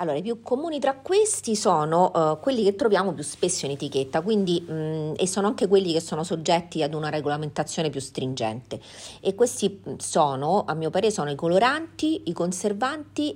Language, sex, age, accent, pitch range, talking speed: Italian, female, 40-59, native, 135-190 Hz, 160 wpm